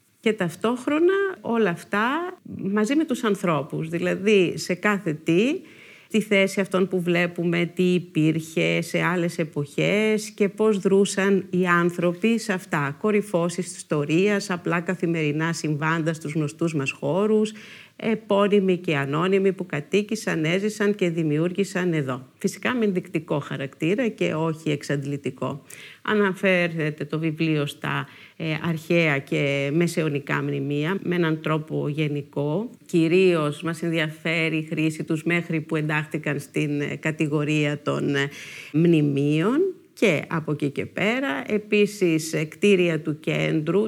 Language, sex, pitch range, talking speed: Greek, female, 155-205 Hz, 120 wpm